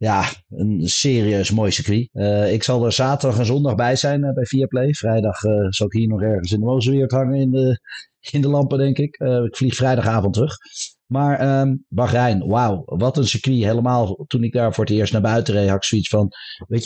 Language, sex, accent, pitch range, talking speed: Dutch, male, Dutch, 110-140 Hz, 225 wpm